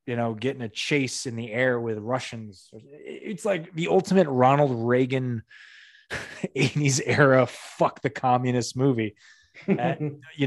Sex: male